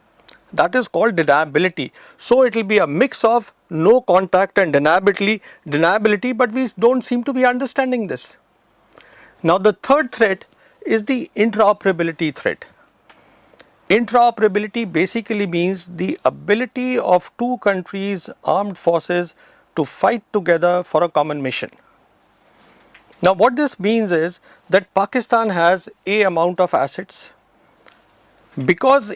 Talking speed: 130 wpm